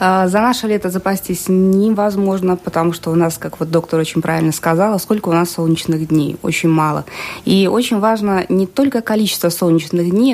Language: Russian